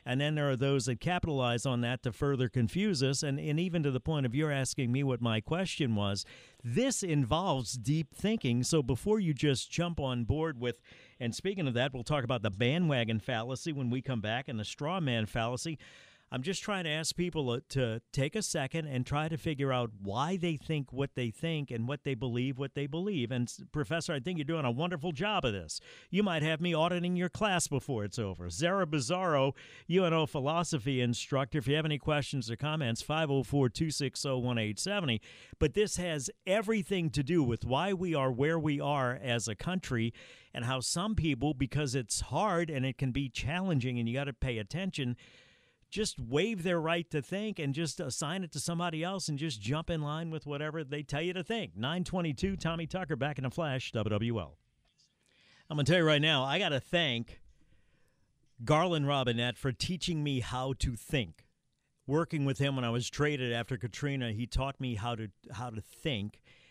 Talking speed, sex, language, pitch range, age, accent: 200 wpm, male, English, 125-165 Hz, 50-69, American